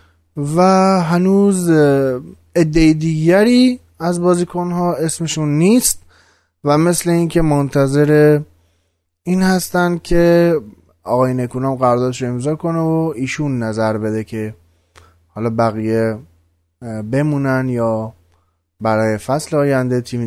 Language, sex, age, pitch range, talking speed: Persian, male, 20-39, 90-140 Hz, 105 wpm